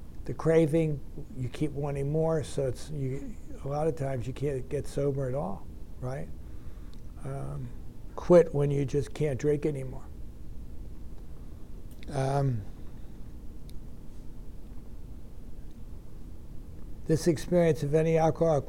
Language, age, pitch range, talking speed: English, 60-79, 135-165 Hz, 105 wpm